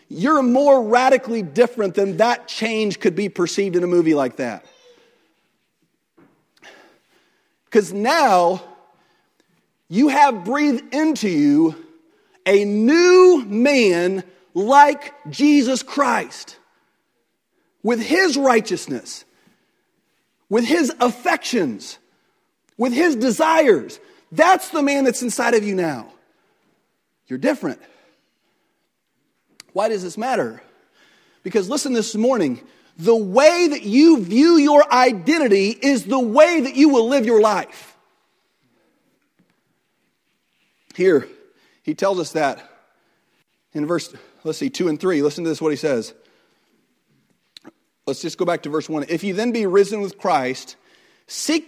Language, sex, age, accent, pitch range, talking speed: English, male, 40-59, American, 200-295 Hz, 120 wpm